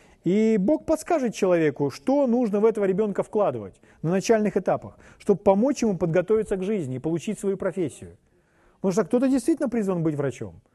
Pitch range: 145-220 Hz